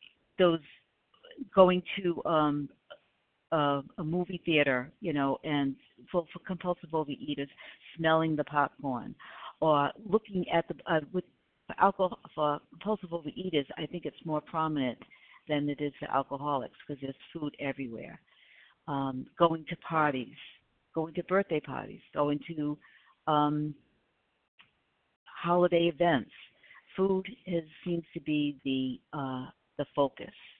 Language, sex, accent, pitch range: English, female, American, 140-170 Hz